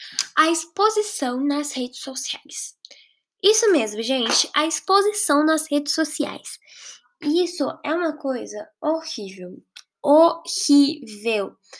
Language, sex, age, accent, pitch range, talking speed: Portuguese, female, 10-29, Brazilian, 250-330 Hz, 95 wpm